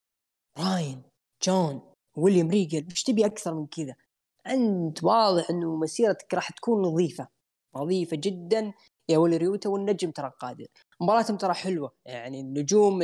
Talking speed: 135 wpm